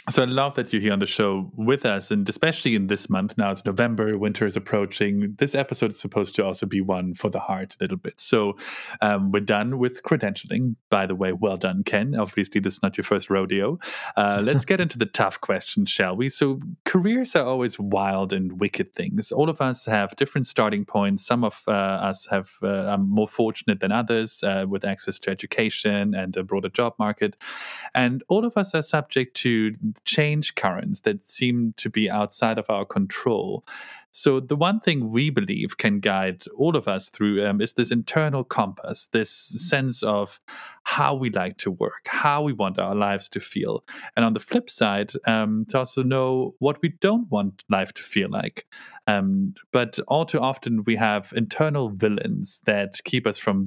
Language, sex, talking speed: English, male, 200 wpm